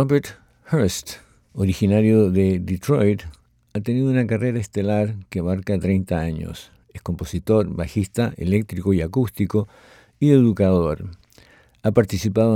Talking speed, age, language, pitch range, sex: 115 wpm, 60-79, English, 95-110 Hz, male